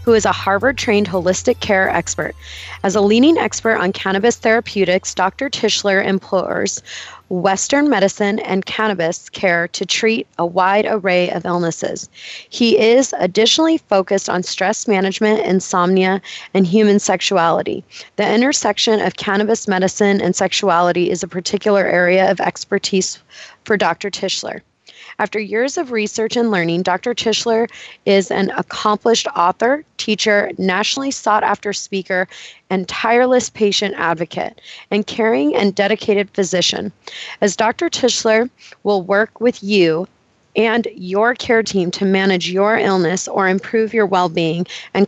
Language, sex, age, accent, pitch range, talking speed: English, female, 20-39, American, 185-220 Hz, 135 wpm